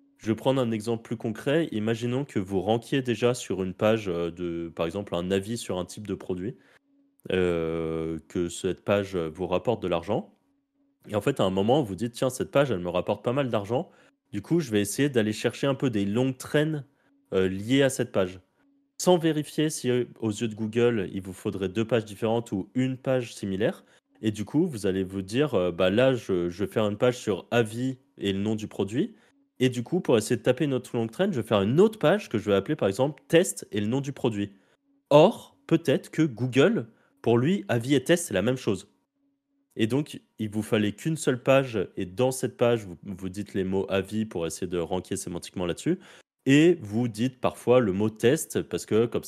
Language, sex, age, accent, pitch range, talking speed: French, male, 20-39, French, 100-135 Hz, 235 wpm